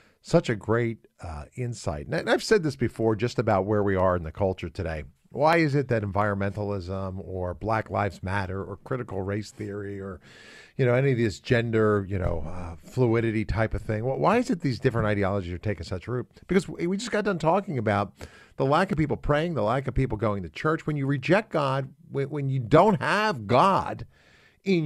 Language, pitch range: English, 100-140 Hz